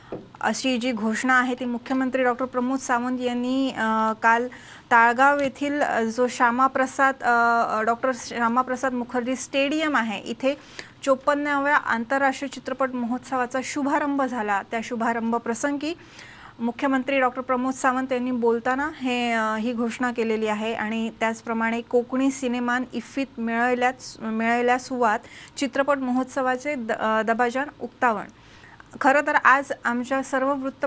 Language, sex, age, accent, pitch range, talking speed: English, female, 30-49, Indian, 230-265 Hz, 95 wpm